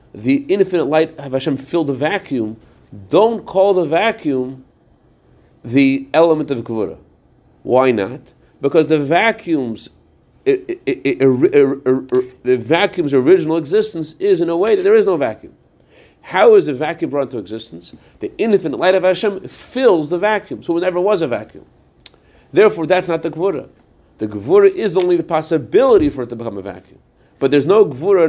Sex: male